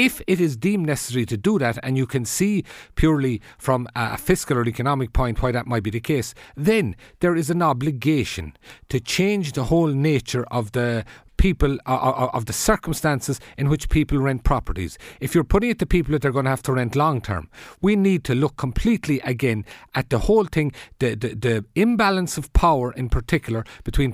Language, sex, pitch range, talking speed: English, male, 125-165 Hz, 200 wpm